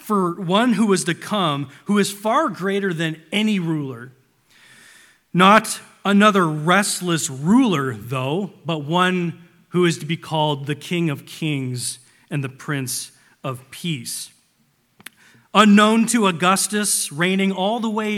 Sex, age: male, 40-59